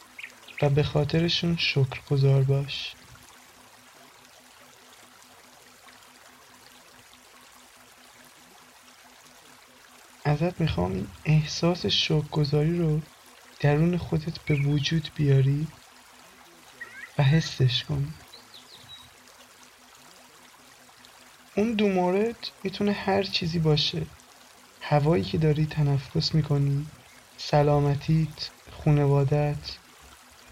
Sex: male